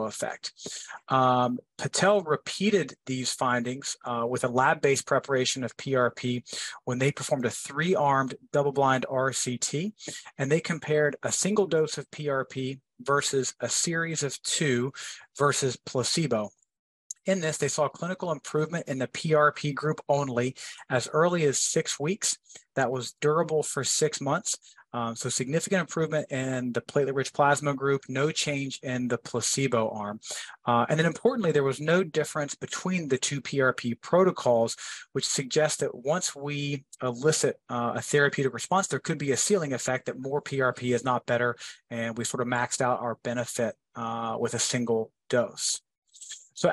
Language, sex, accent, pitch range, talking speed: English, male, American, 125-150 Hz, 160 wpm